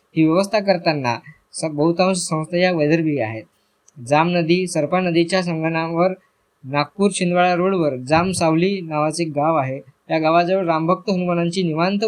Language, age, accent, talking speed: Marathi, 20-39, native, 130 wpm